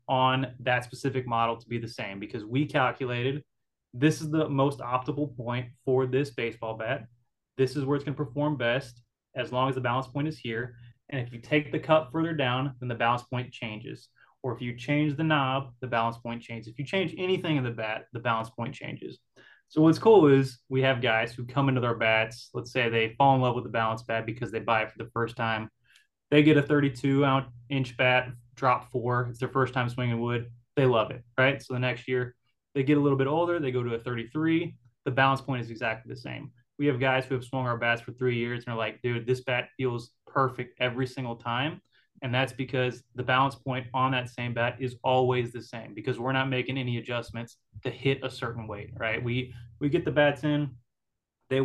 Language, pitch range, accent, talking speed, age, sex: English, 120-135 Hz, American, 225 wpm, 20-39, male